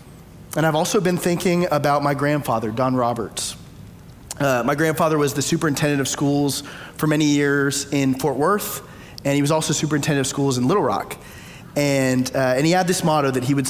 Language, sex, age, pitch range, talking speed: English, male, 30-49, 130-160 Hz, 195 wpm